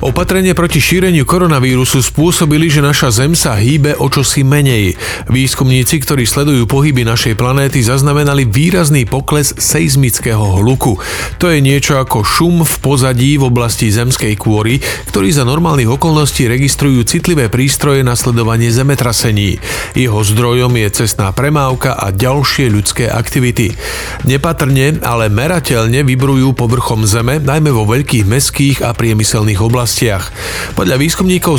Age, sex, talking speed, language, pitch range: 40-59, male, 130 wpm, Slovak, 115-145 Hz